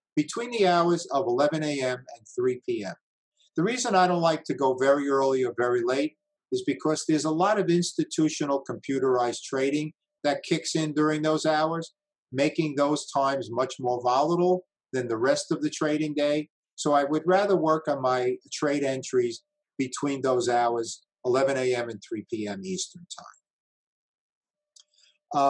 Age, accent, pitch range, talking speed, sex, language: 50-69, American, 135-175 Hz, 160 wpm, male, English